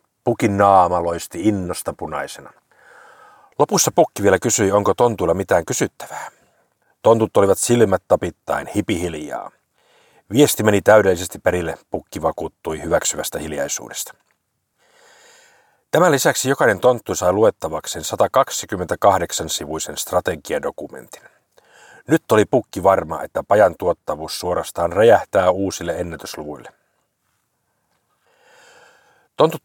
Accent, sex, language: native, male, Finnish